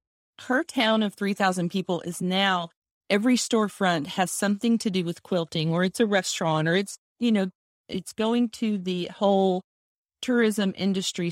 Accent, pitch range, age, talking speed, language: American, 175-225 Hz, 40-59, 160 wpm, English